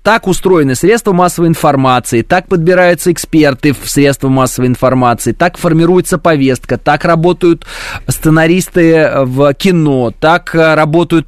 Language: Russian